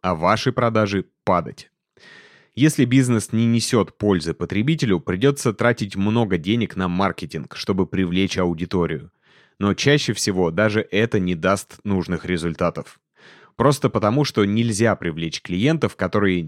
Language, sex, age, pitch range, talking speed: Russian, male, 30-49, 90-115 Hz, 125 wpm